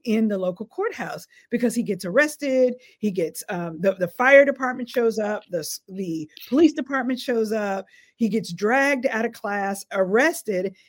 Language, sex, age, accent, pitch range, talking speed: English, female, 40-59, American, 190-255 Hz, 165 wpm